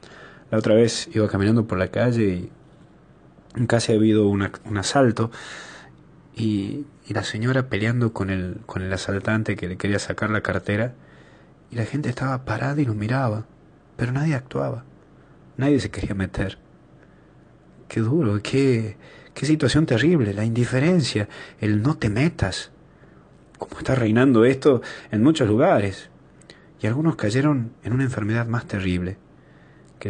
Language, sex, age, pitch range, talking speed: Spanish, male, 30-49, 105-145 Hz, 150 wpm